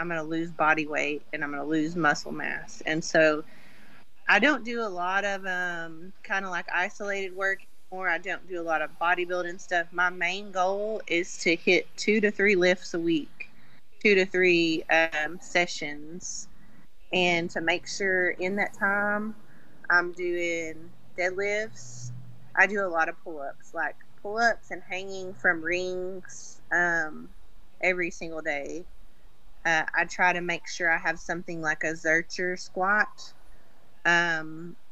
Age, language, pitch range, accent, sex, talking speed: 30-49, English, 165-190 Hz, American, female, 160 wpm